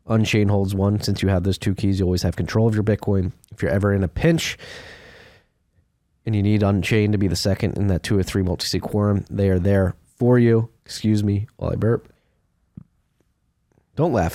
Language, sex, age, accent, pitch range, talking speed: English, male, 20-39, American, 85-105 Hz, 210 wpm